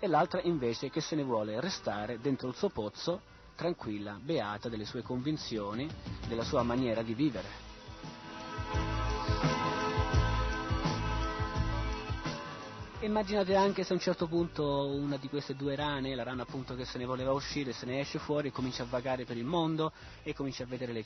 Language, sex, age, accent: Italian, male, 30-49, native